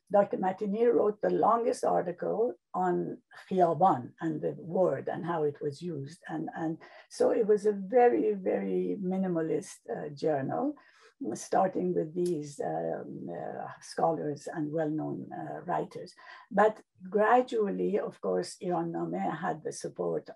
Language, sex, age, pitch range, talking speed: English, female, 60-79, 155-210 Hz, 130 wpm